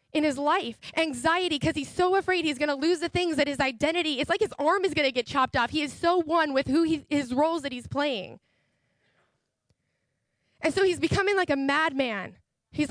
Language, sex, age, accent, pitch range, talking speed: English, female, 10-29, American, 290-360 Hz, 220 wpm